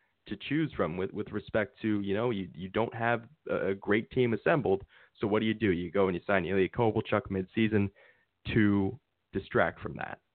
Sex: male